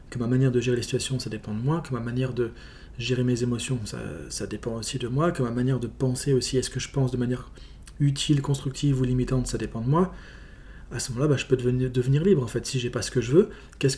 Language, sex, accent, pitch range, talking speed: French, male, French, 125-145 Hz, 275 wpm